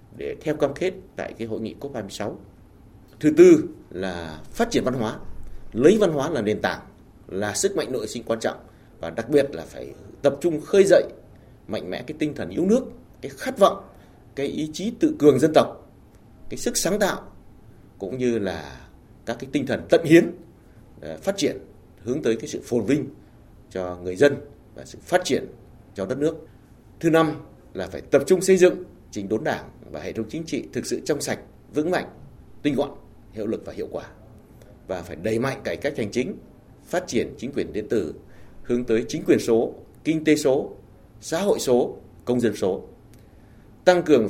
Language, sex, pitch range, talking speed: Vietnamese, male, 105-150 Hz, 195 wpm